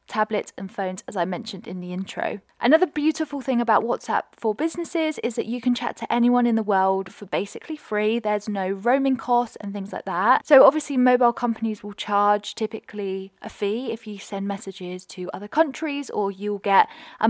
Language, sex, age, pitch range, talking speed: English, female, 10-29, 195-250 Hz, 200 wpm